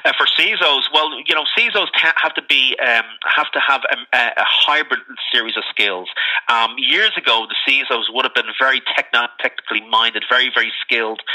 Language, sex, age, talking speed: English, male, 30-49, 185 wpm